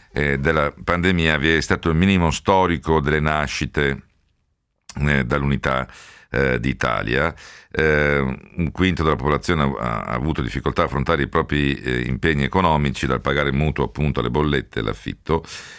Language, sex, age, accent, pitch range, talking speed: Italian, male, 50-69, native, 70-85 Hz, 145 wpm